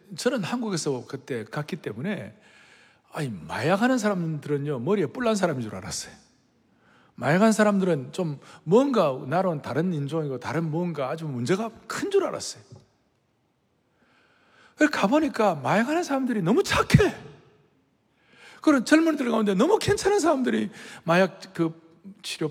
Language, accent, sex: Korean, native, male